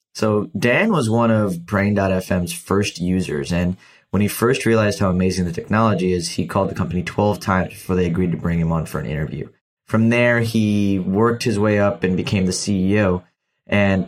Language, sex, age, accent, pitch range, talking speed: English, male, 20-39, American, 90-110 Hz, 195 wpm